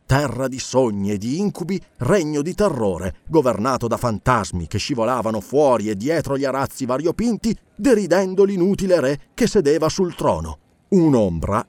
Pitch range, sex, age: 105-175 Hz, male, 40-59